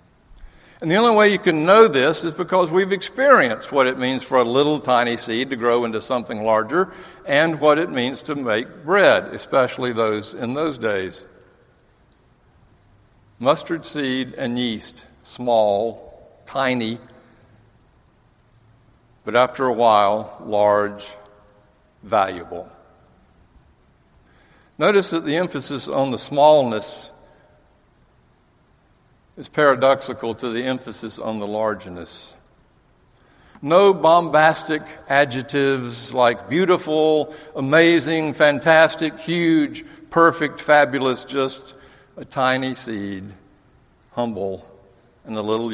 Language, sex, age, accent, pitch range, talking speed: English, male, 60-79, American, 115-155 Hz, 110 wpm